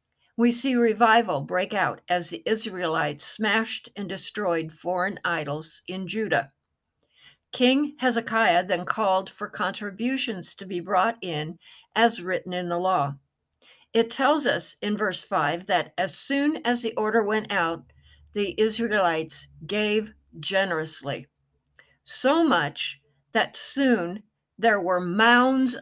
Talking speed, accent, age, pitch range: 130 wpm, American, 50-69, 175-230 Hz